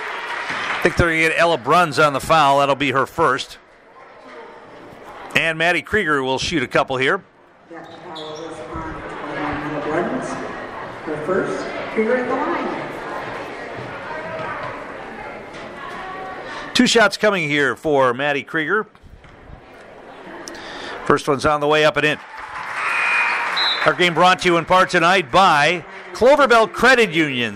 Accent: American